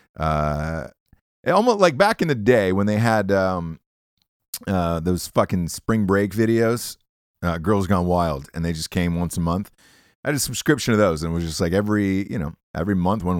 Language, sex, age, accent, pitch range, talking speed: English, male, 30-49, American, 80-110 Hz, 205 wpm